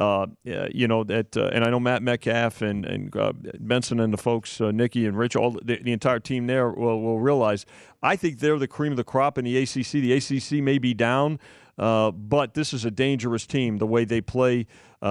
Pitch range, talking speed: 115-135 Hz, 230 wpm